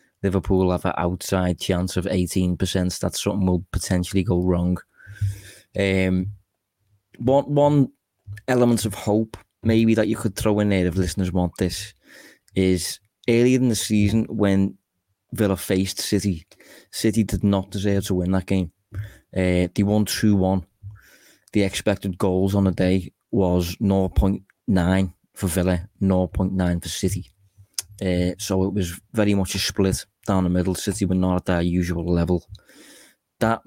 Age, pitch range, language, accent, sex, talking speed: 20-39, 90-100 Hz, English, British, male, 150 wpm